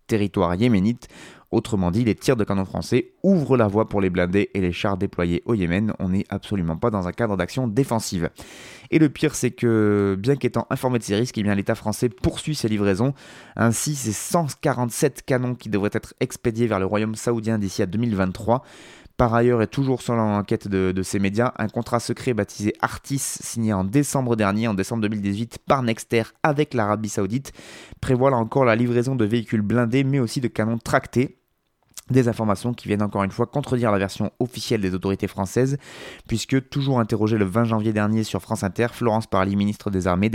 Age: 20-39